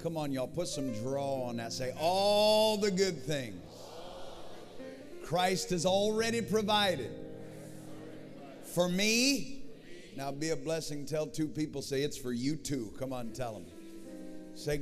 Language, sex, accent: English, male, American